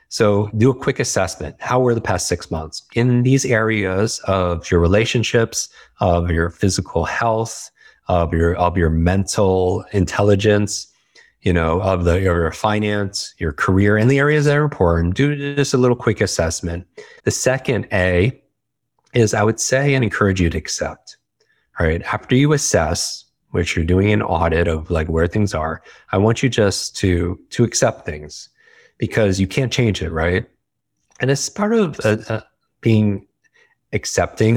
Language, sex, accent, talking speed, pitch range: English, male, American, 165 wpm, 90-120 Hz